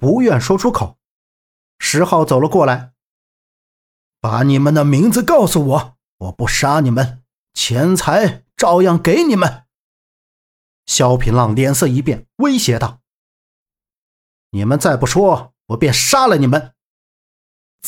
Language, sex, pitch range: Chinese, male, 125-205 Hz